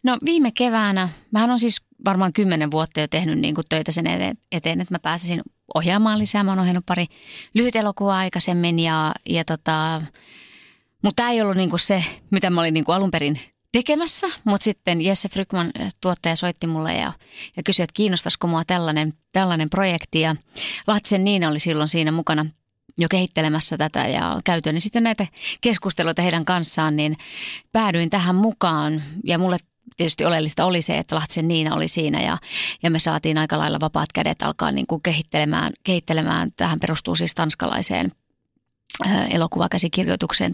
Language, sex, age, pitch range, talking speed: Finnish, female, 30-49, 160-200 Hz, 165 wpm